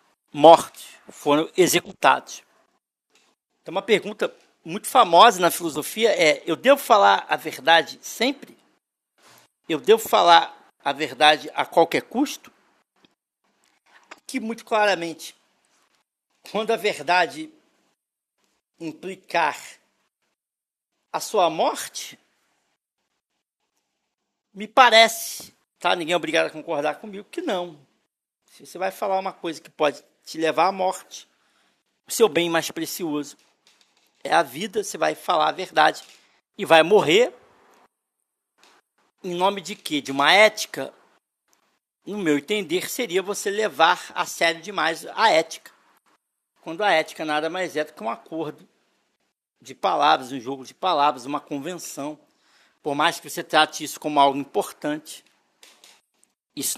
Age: 60-79